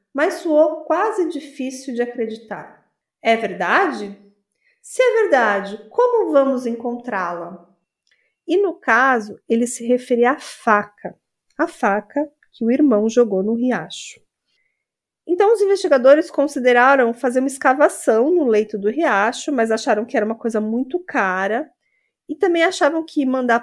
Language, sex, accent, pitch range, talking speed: Portuguese, female, Brazilian, 215-290 Hz, 135 wpm